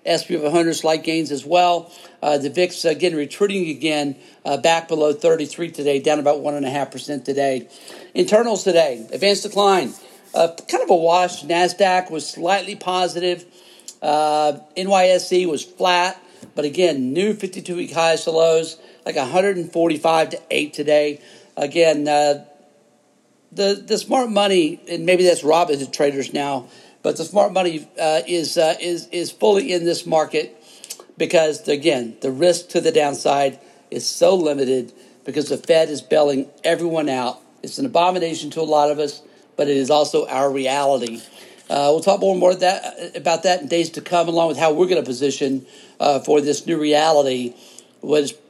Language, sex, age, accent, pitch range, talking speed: English, male, 50-69, American, 150-180 Hz, 170 wpm